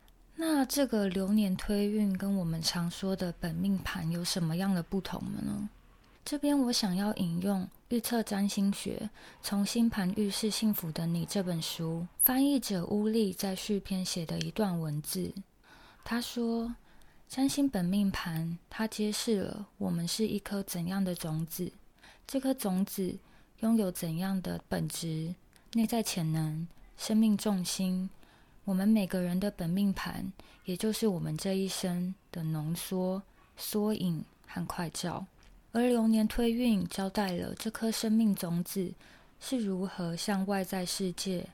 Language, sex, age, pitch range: Chinese, female, 20-39, 175-215 Hz